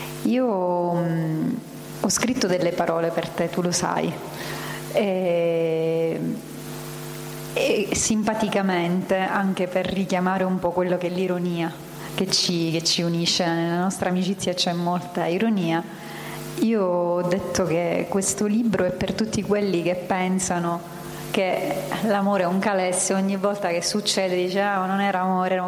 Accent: native